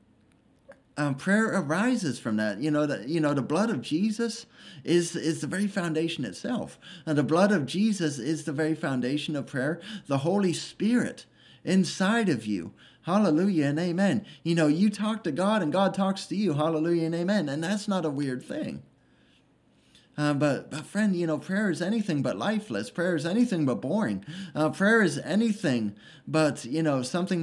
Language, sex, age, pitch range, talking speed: English, male, 30-49, 150-205 Hz, 185 wpm